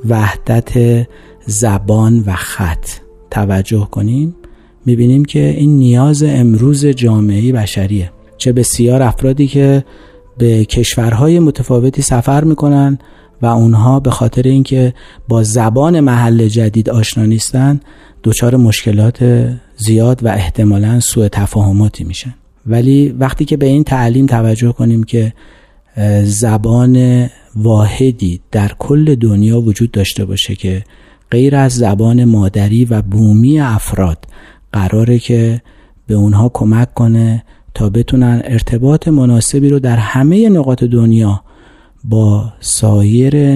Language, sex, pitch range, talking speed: Persian, male, 105-130 Hz, 115 wpm